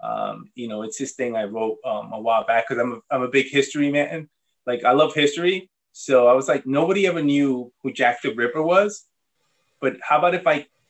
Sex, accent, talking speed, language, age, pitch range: male, American, 220 wpm, English, 20-39, 125-155 Hz